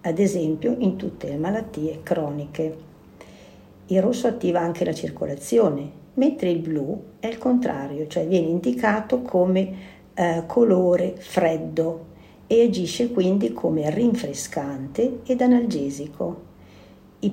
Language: Italian